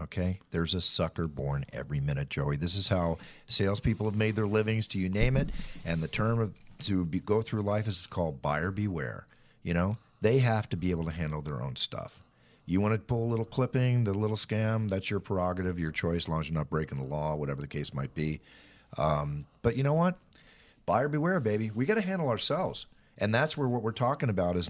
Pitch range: 85-115 Hz